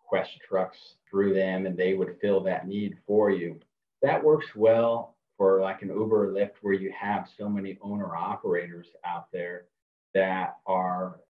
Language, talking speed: English, 165 wpm